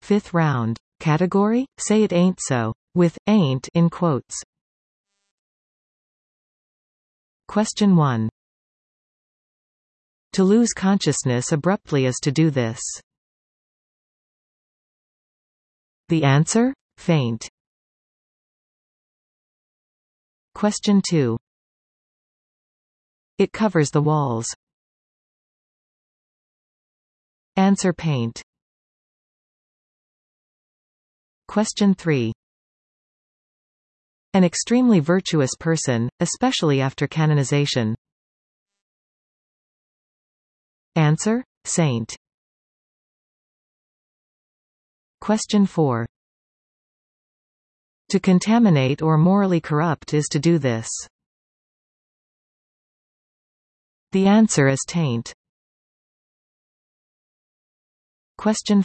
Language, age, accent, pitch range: English, 50-69, American, 120-195 Hz